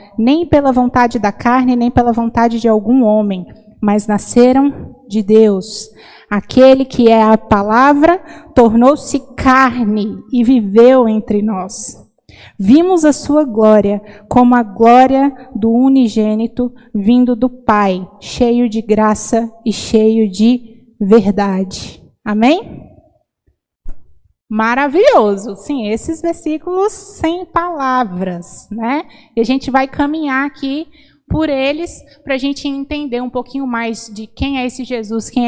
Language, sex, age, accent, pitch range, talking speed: Portuguese, female, 20-39, Brazilian, 220-285 Hz, 125 wpm